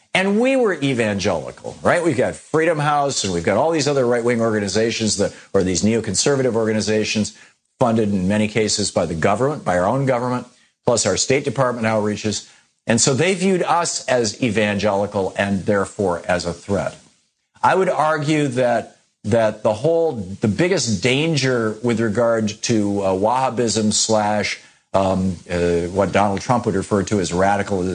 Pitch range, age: 100-130 Hz, 50-69